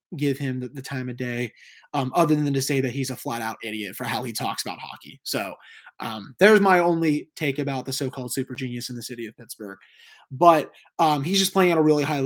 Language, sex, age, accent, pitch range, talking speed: English, male, 20-39, American, 130-165 Hz, 235 wpm